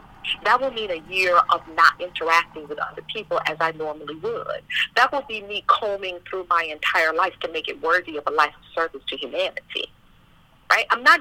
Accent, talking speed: American, 205 wpm